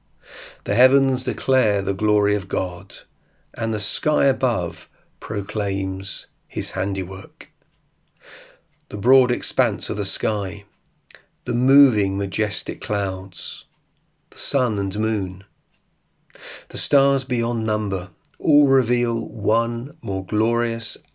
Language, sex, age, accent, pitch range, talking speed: English, male, 40-59, British, 100-125 Hz, 105 wpm